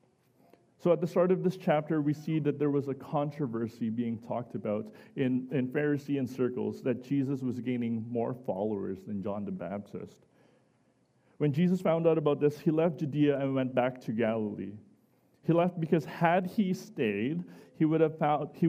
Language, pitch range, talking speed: English, 125-165 Hz, 165 wpm